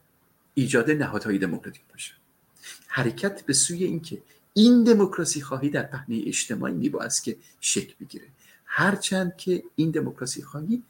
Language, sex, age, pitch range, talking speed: Persian, male, 50-69, 120-180 Hz, 140 wpm